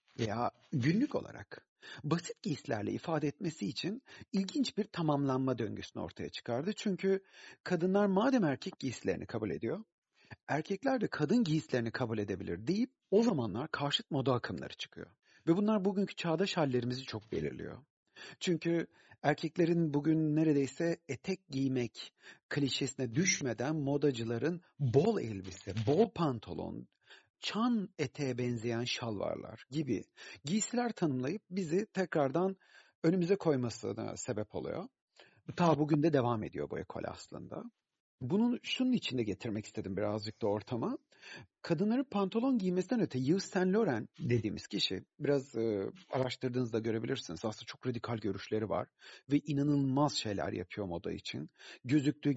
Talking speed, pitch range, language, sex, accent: 125 wpm, 120-180 Hz, Turkish, male, native